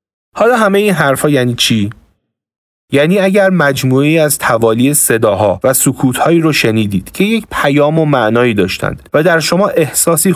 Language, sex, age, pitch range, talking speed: Persian, male, 40-59, 115-160 Hz, 150 wpm